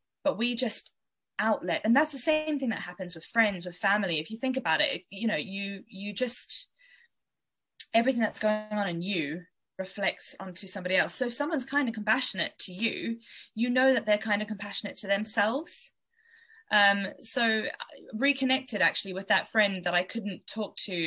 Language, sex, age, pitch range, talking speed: English, female, 20-39, 190-230 Hz, 180 wpm